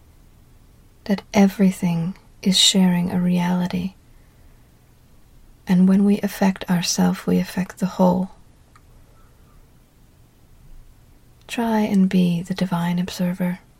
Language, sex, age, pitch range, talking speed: English, female, 40-59, 180-200 Hz, 90 wpm